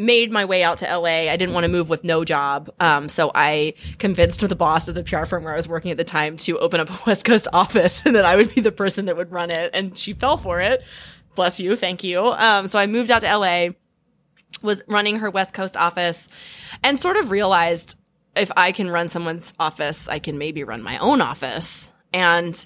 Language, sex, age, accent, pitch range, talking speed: English, female, 20-39, American, 155-190 Hz, 235 wpm